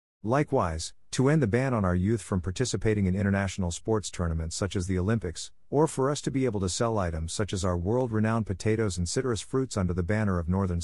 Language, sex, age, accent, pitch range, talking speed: English, male, 50-69, American, 90-115 Hz, 220 wpm